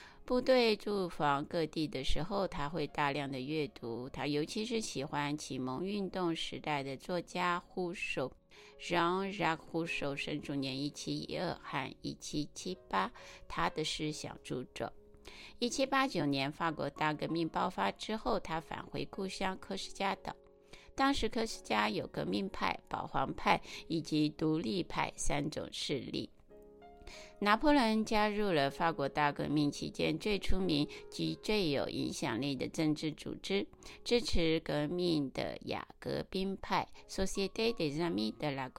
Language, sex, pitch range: Chinese, female, 145-195 Hz